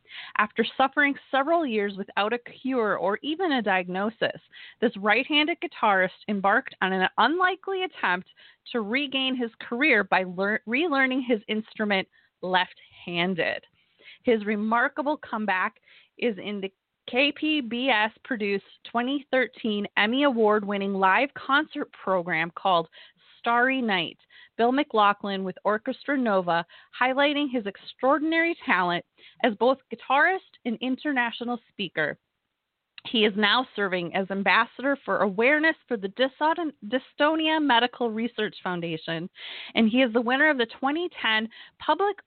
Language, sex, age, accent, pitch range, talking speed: English, female, 20-39, American, 195-265 Hz, 120 wpm